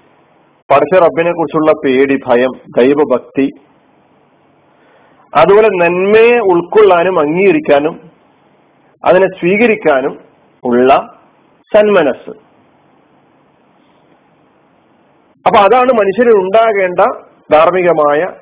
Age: 40-59